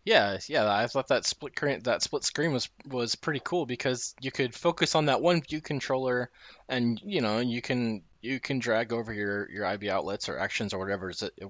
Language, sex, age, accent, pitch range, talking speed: English, male, 20-39, American, 95-125 Hz, 225 wpm